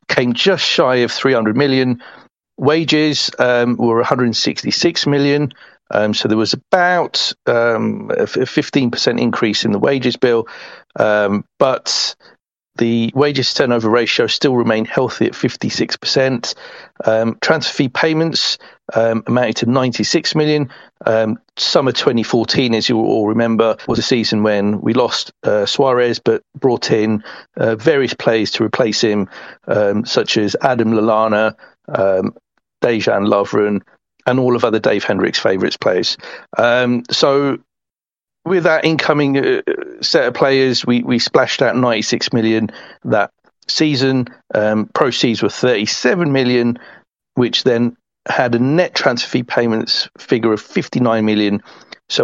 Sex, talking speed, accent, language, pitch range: male, 140 wpm, British, English, 115-145 Hz